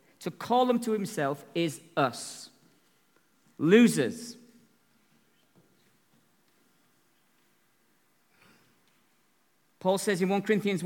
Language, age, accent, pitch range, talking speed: English, 50-69, British, 160-235 Hz, 70 wpm